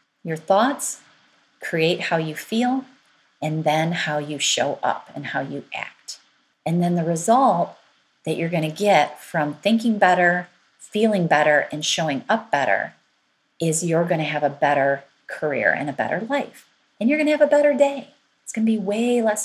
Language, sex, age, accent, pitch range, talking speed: English, female, 30-49, American, 155-220 Hz, 185 wpm